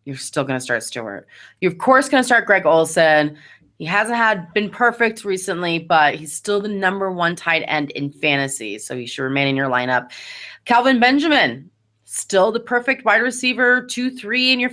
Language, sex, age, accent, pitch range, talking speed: English, female, 30-49, American, 155-230 Hz, 190 wpm